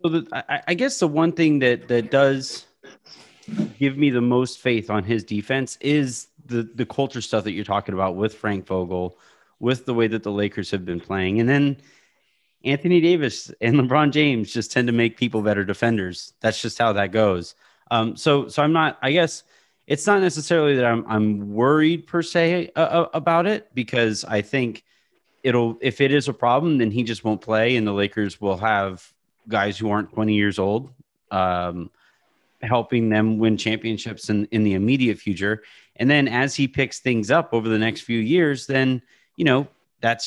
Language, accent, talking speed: English, American, 190 wpm